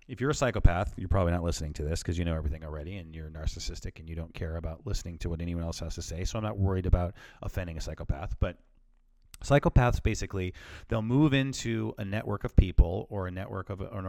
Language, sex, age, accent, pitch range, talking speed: English, male, 30-49, American, 90-115 Hz, 230 wpm